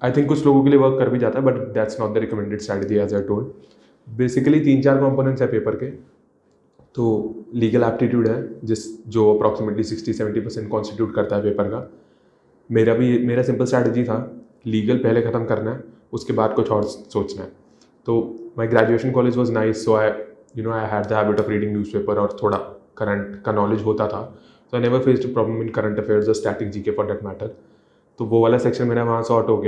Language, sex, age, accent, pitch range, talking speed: English, male, 20-39, Indian, 105-115 Hz, 180 wpm